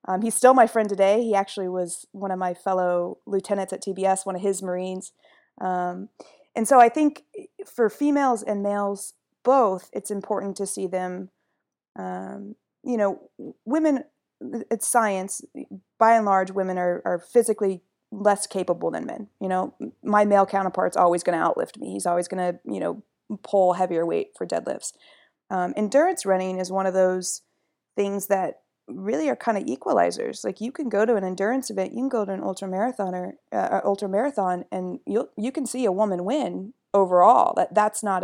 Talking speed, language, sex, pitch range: 185 wpm, English, female, 190-225 Hz